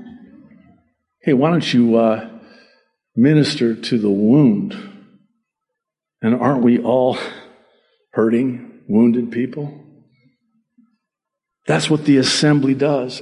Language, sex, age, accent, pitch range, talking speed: English, male, 50-69, American, 130-215 Hz, 95 wpm